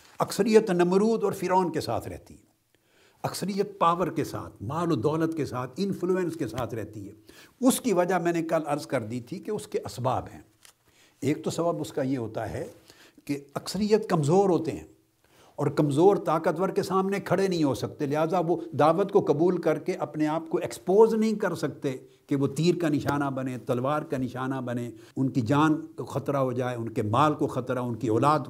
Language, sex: Urdu, male